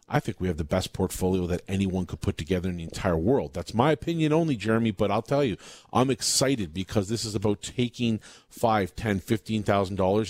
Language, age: English, 40-59